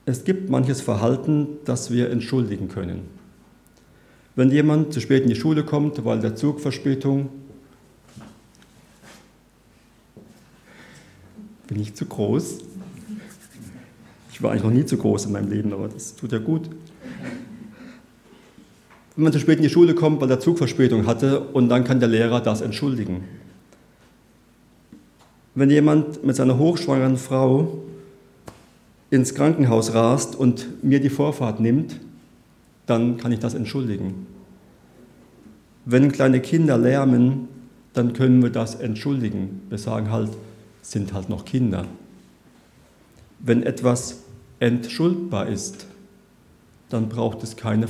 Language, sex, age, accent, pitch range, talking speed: German, male, 40-59, German, 115-145 Hz, 125 wpm